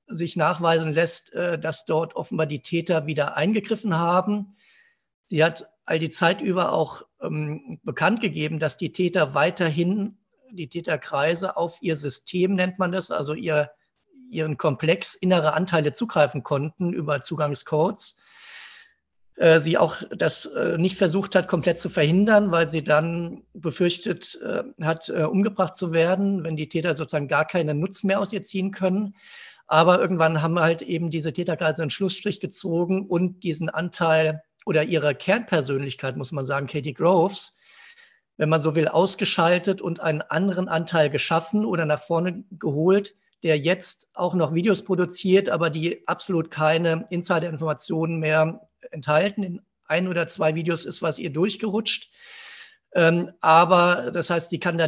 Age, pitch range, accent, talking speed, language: 50-69, 160-190 Hz, German, 150 wpm, German